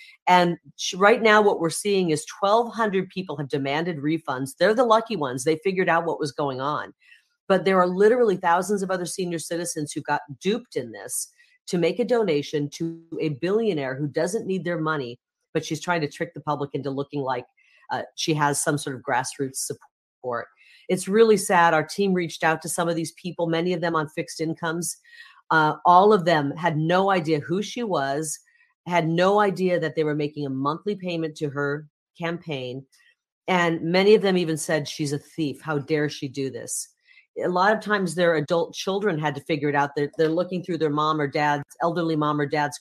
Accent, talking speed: American, 205 wpm